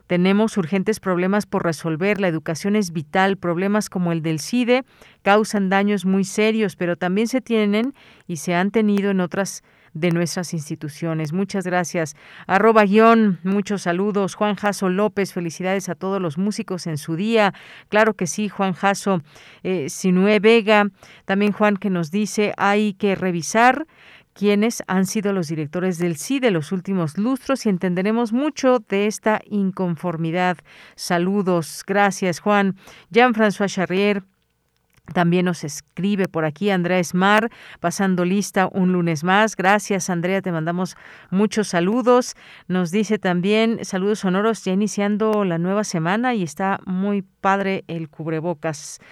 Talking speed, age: 145 wpm, 40-59